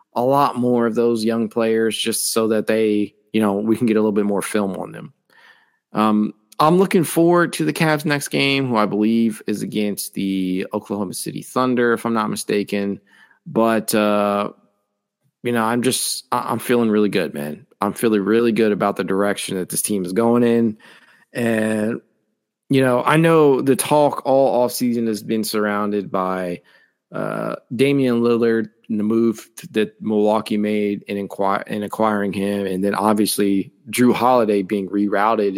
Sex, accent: male, American